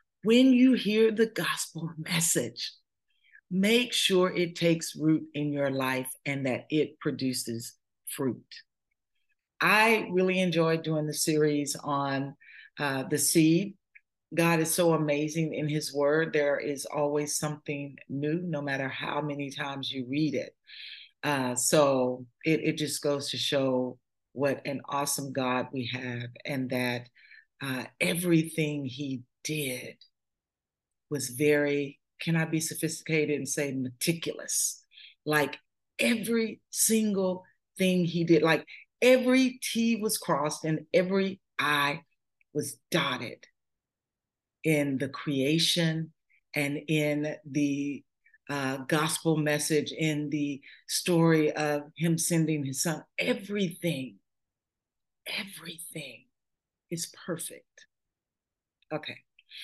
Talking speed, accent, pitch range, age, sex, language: 115 wpm, American, 140-170 Hz, 50-69, female, English